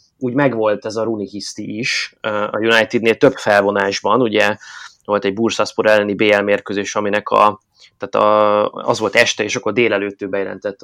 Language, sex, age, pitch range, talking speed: Hungarian, male, 20-39, 105-130 Hz, 160 wpm